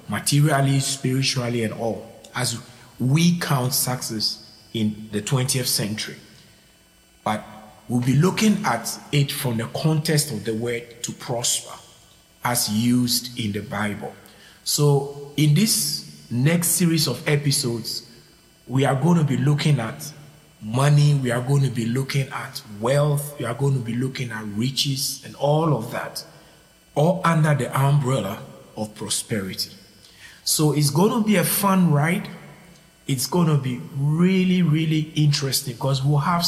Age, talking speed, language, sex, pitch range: 40-59, 150 wpm, English, male, 120-150 Hz